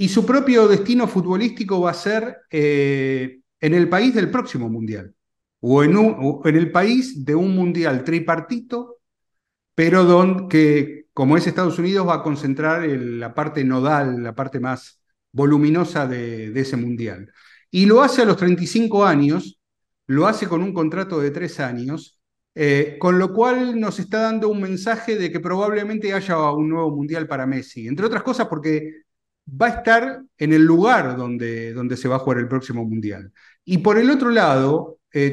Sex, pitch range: male, 135-195 Hz